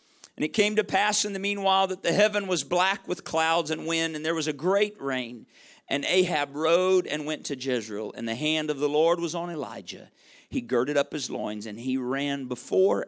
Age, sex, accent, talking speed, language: 50-69, male, American, 220 wpm, English